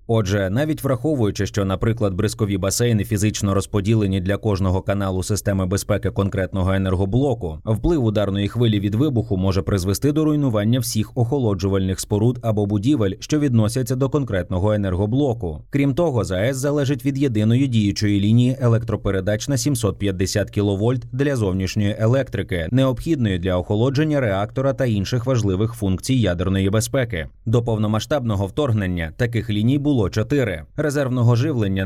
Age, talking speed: 30-49, 130 wpm